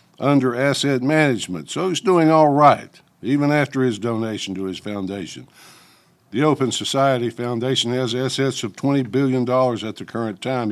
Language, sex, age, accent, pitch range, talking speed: English, male, 60-79, American, 105-130 Hz, 155 wpm